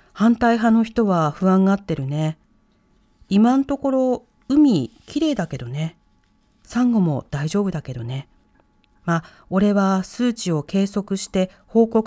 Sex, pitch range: female, 175-240 Hz